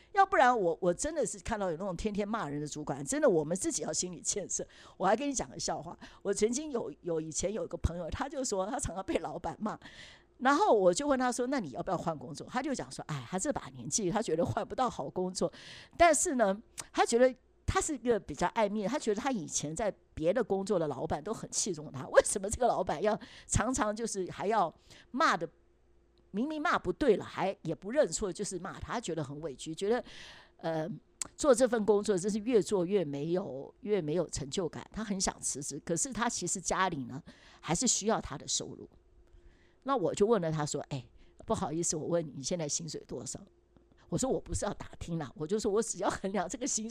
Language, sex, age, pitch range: Chinese, female, 50-69, 160-225 Hz